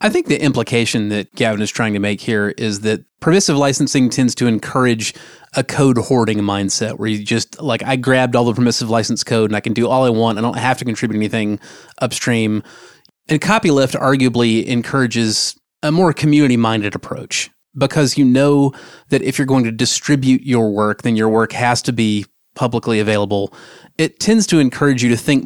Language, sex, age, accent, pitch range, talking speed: English, male, 30-49, American, 115-140 Hz, 195 wpm